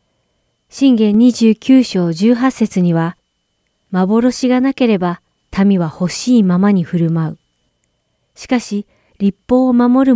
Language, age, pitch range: Japanese, 40-59, 180-245 Hz